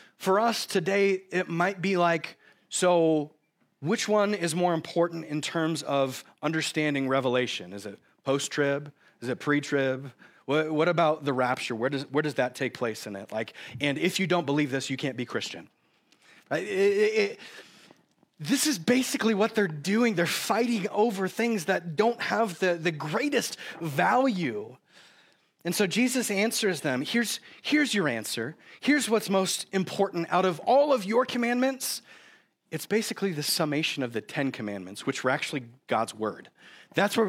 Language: English